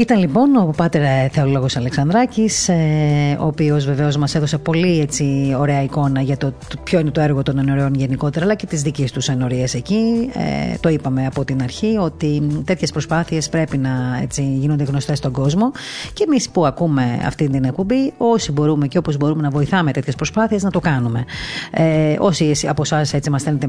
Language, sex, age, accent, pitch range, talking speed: Greek, female, 30-49, native, 135-165 Hz, 185 wpm